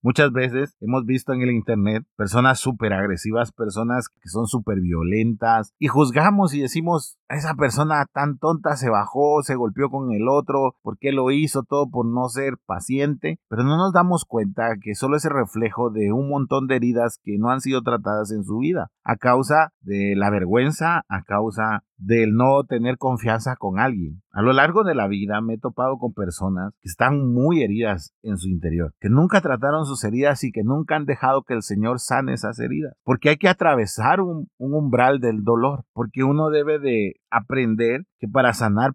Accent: Mexican